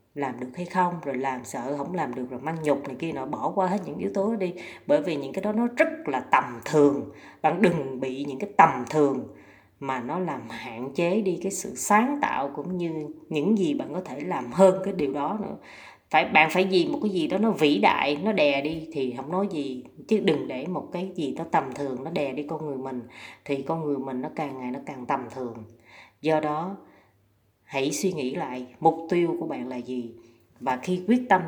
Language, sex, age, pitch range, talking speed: Vietnamese, female, 20-39, 125-175 Hz, 235 wpm